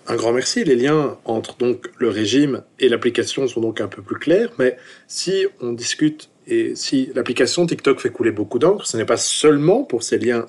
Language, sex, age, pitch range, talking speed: French, male, 40-59, 120-170 Hz, 205 wpm